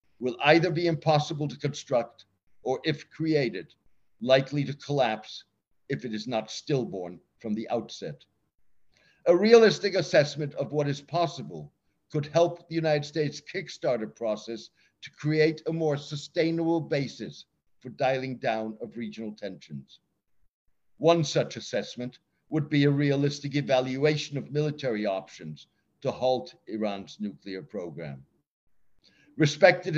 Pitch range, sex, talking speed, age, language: 120-155 Hz, male, 125 wpm, 60-79, German